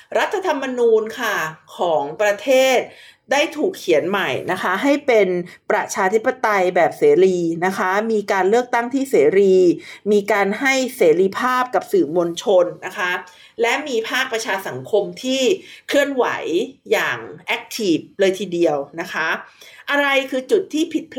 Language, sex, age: Thai, female, 50-69